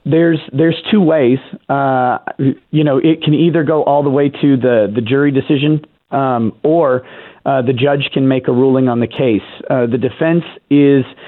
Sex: male